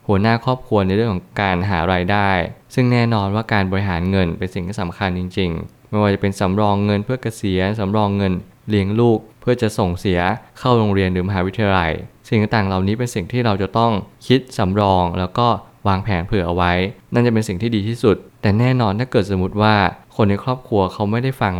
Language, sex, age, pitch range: Thai, male, 20-39, 95-115 Hz